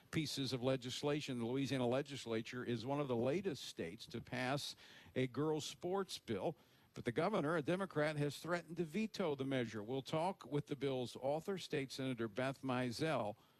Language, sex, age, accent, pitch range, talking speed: English, male, 50-69, American, 115-155 Hz, 170 wpm